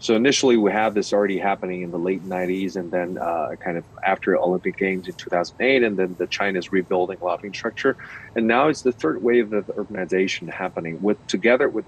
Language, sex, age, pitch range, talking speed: English, male, 30-49, 100-130 Hz, 200 wpm